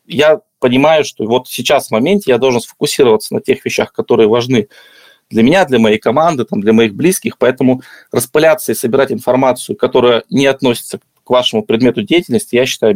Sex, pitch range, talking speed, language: male, 115-155 Hz, 170 wpm, Russian